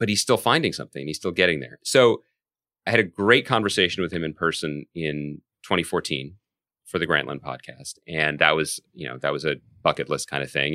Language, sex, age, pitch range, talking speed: English, male, 30-49, 75-95 Hz, 210 wpm